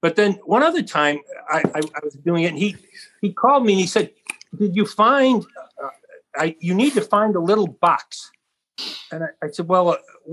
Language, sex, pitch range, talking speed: English, male, 165-215 Hz, 210 wpm